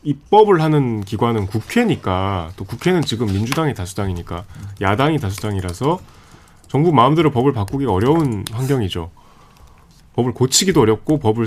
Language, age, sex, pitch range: Korean, 30-49, male, 100-150 Hz